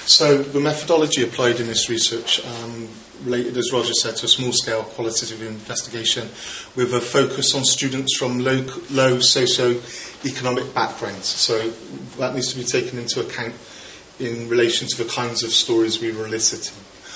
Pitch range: 115-125 Hz